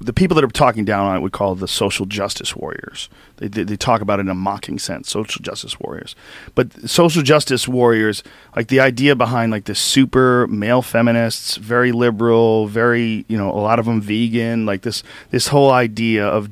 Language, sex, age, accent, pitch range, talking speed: English, male, 40-59, American, 105-125 Hz, 205 wpm